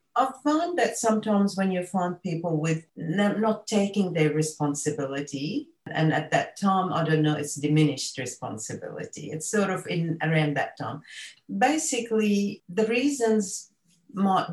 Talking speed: 145 wpm